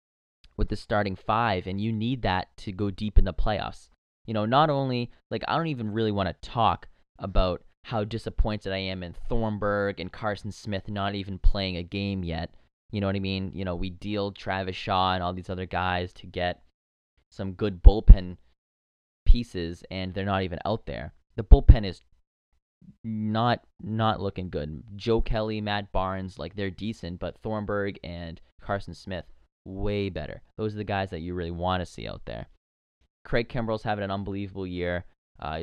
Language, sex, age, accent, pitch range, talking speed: English, male, 20-39, American, 85-105 Hz, 185 wpm